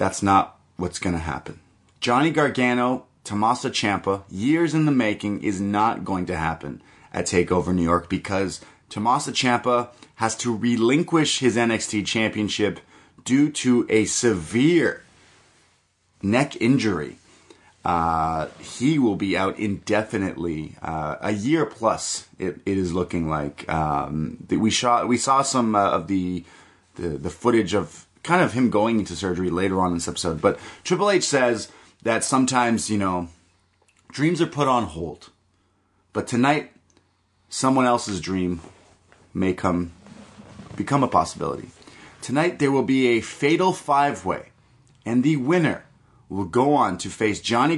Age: 30-49